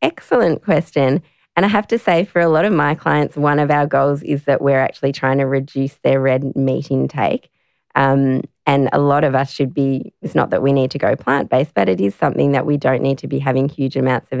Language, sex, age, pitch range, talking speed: English, female, 20-39, 135-145 Hz, 240 wpm